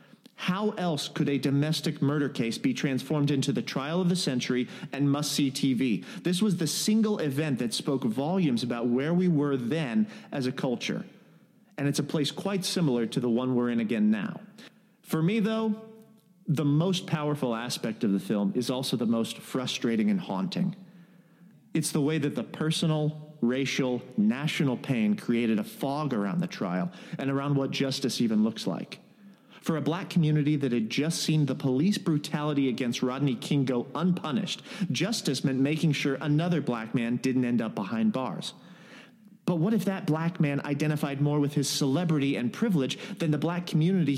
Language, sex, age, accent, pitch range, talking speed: English, male, 40-59, American, 135-195 Hz, 180 wpm